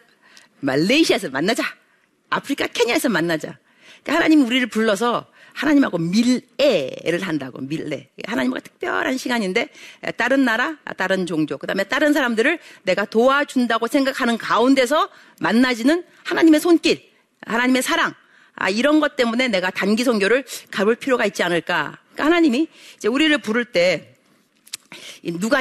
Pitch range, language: 200-300 Hz, Korean